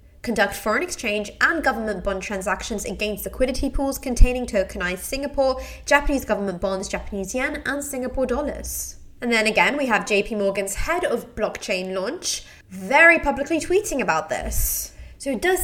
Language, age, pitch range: English, 20-39, 205-275 Hz